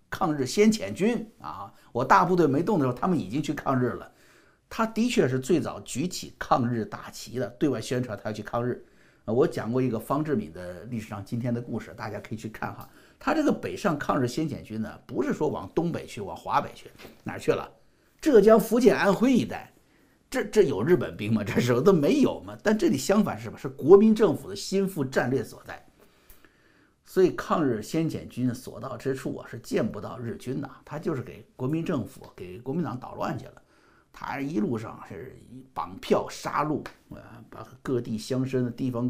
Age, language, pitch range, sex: 50-69, Chinese, 115-160 Hz, male